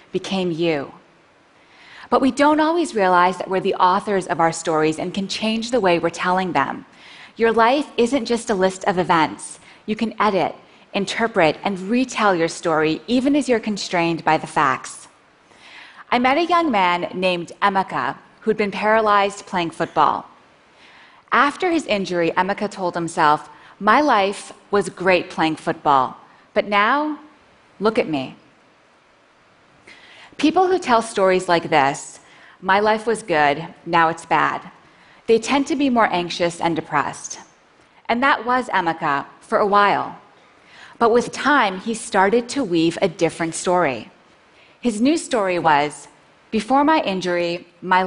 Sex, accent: female, American